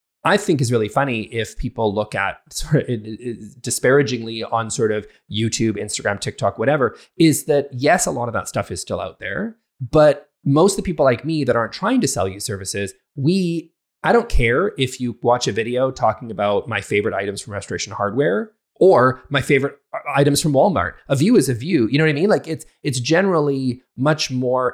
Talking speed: 200 wpm